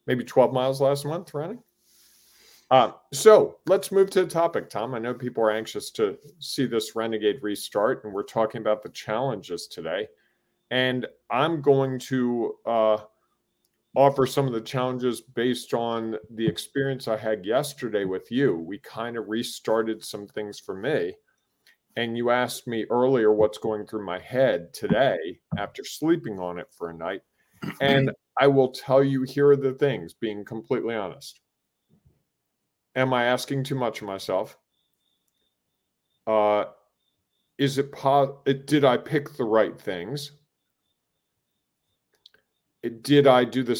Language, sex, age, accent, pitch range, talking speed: English, male, 40-59, American, 110-140 Hz, 150 wpm